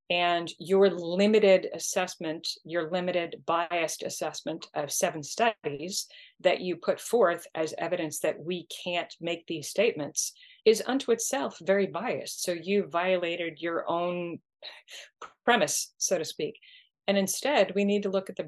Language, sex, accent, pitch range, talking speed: English, female, American, 165-200 Hz, 145 wpm